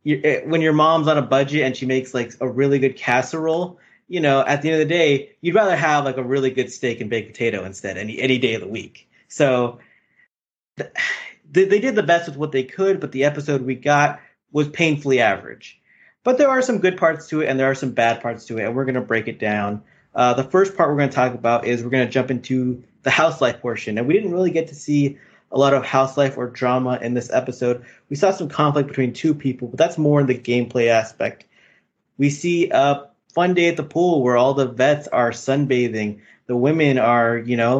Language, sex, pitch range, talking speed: English, male, 125-155 Hz, 235 wpm